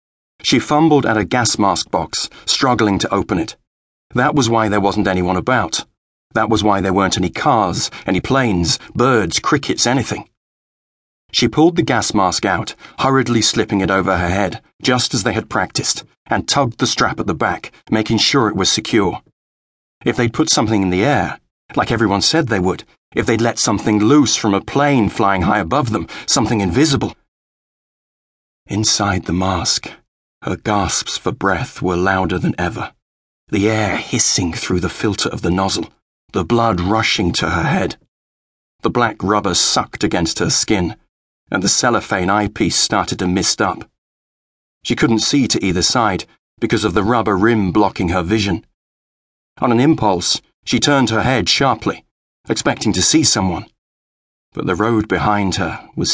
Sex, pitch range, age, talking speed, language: male, 90-115 Hz, 40-59, 170 wpm, English